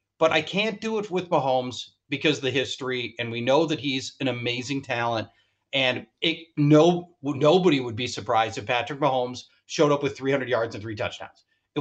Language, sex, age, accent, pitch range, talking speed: English, male, 30-49, American, 125-175 Hz, 190 wpm